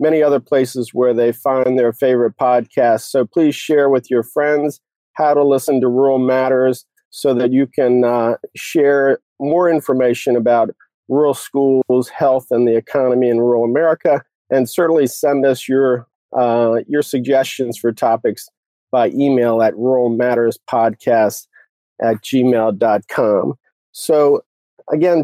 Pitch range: 120-145 Hz